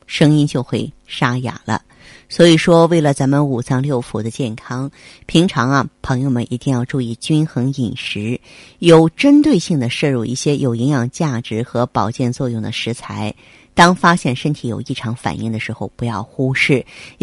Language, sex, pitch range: Chinese, female, 125-165 Hz